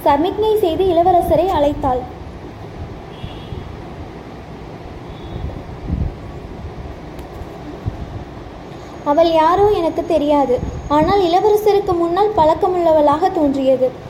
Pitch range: 300-390 Hz